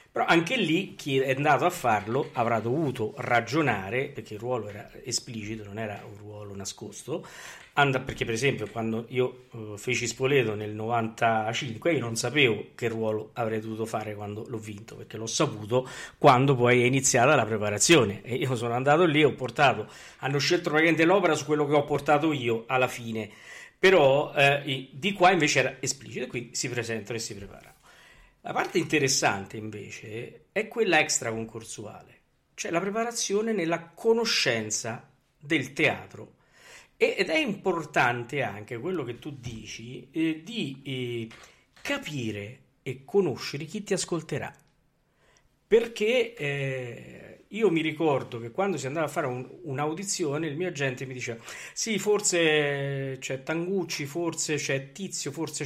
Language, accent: Italian, native